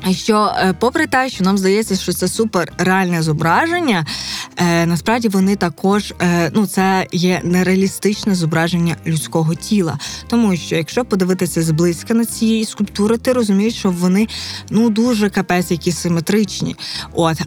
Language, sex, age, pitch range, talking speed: Ukrainian, female, 20-39, 180-220 Hz, 140 wpm